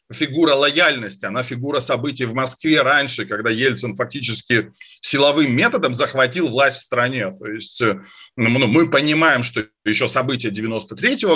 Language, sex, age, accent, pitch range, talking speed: Russian, male, 40-59, native, 120-160 Hz, 135 wpm